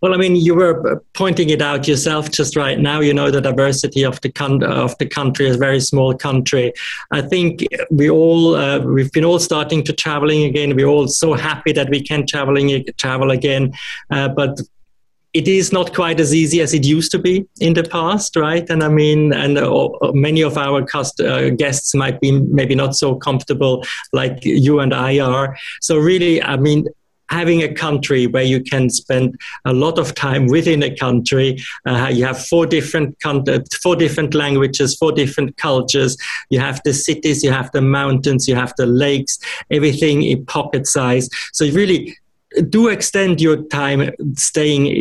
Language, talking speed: English, 190 wpm